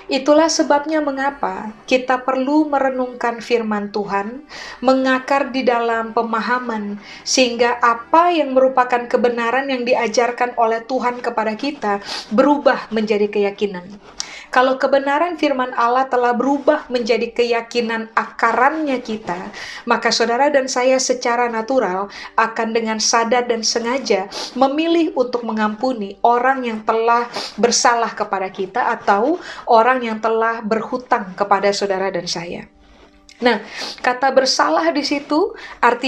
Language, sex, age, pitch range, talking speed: Indonesian, female, 30-49, 225-265 Hz, 120 wpm